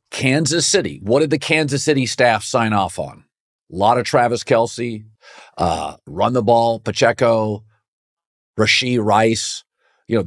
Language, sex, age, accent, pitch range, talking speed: English, male, 50-69, American, 110-160 Hz, 145 wpm